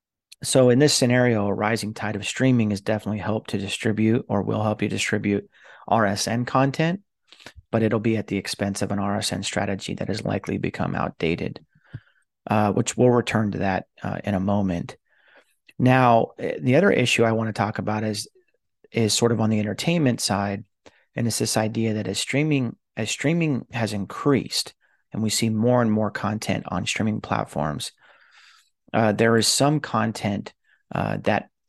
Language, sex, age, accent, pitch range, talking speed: English, male, 30-49, American, 100-115 Hz, 170 wpm